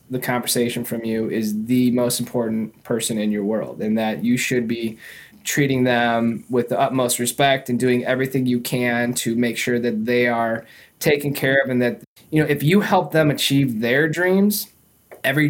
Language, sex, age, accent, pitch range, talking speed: English, male, 20-39, American, 120-135 Hz, 190 wpm